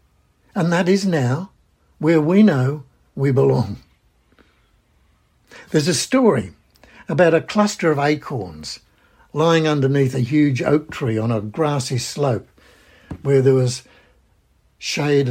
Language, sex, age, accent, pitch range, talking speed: English, male, 60-79, British, 120-160 Hz, 120 wpm